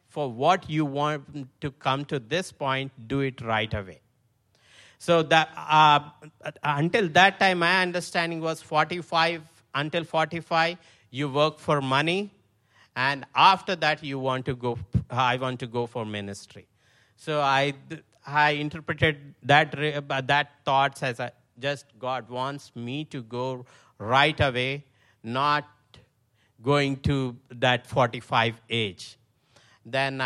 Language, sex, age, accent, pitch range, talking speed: English, male, 50-69, Indian, 120-150 Hz, 130 wpm